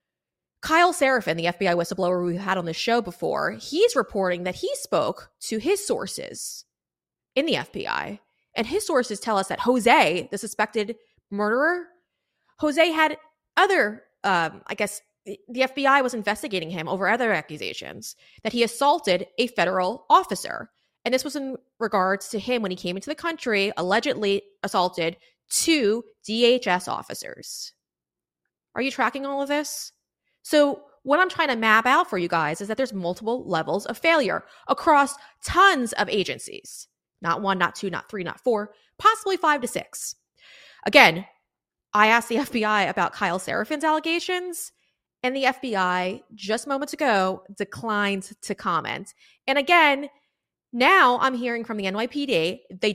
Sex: female